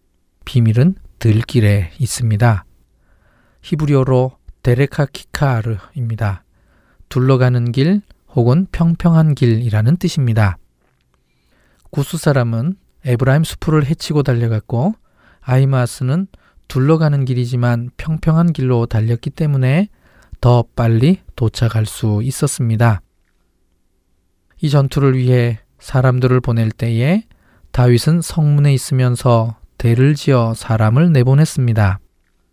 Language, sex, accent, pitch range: Korean, male, native, 110-140 Hz